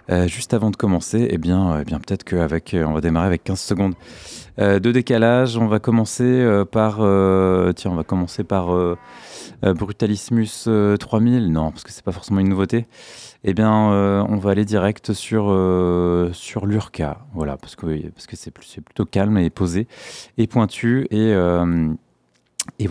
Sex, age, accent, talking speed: male, 30-49, French, 180 wpm